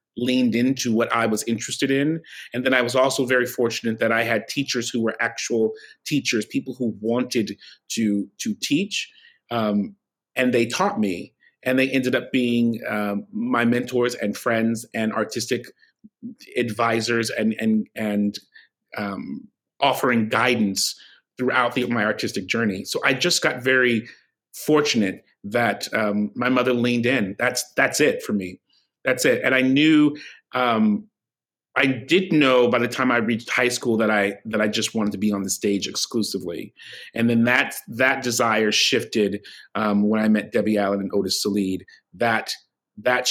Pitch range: 110-130 Hz